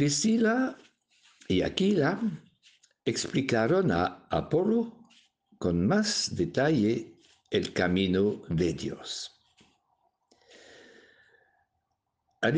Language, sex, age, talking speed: Spanish, male, 60-79, 65 wpm